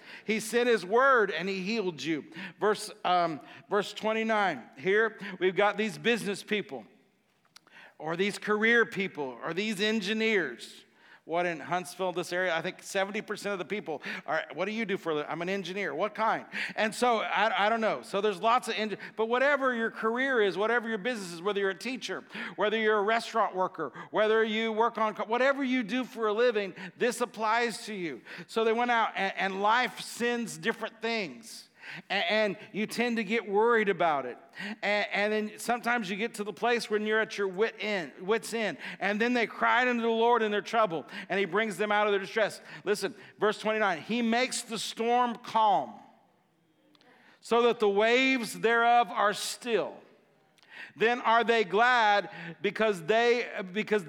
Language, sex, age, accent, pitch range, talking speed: English, male, 50-69, American, 200-230 Hz, 180 wpm